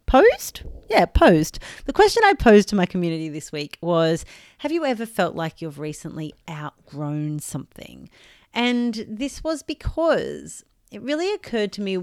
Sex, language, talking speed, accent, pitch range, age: female, English, 155 wpm, Australian, 155-240 Hz, 30-49